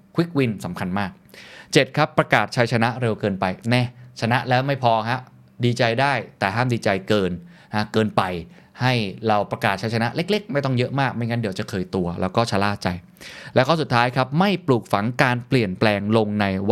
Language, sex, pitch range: Thai, male, 105-140 Hz